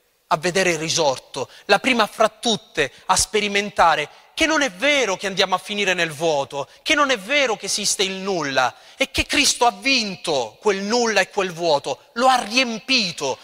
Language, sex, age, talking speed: Italian, male, 30-49, 185 wpm